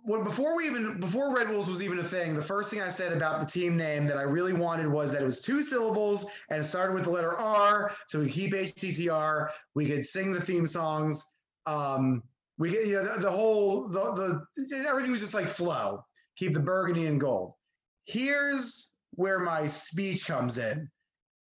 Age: 30-49